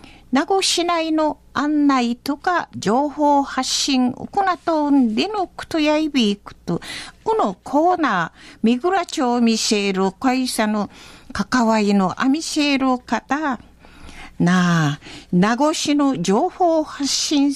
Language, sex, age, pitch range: Japanese, female, 50-69, 225-320 Hz